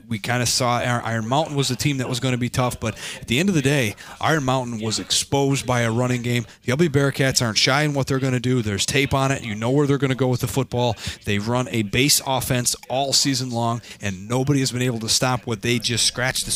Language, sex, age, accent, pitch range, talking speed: English, male, 30-49, American, 115-135 Hz, 270 wpm